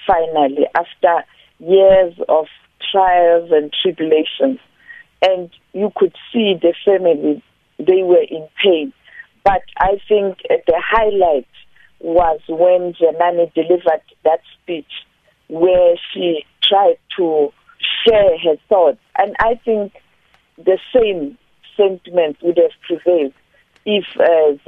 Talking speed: 110 wpm